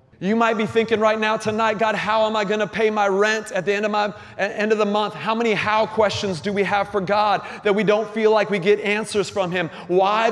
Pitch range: 130-215 Hz